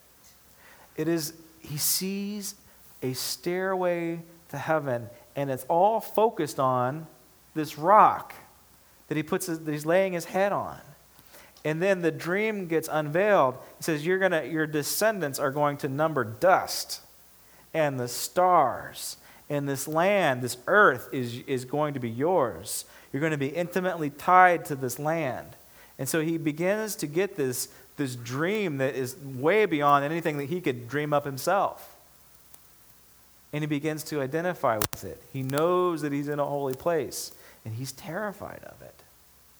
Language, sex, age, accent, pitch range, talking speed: English, male, 40-59, American, 115-160 Hz, 160 wpm